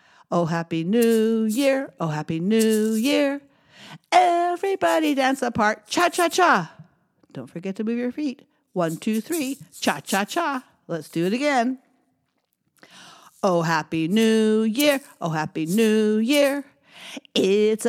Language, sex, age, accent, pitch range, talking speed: English, female, 50-69, American, 165-270 Hz, 130 wpm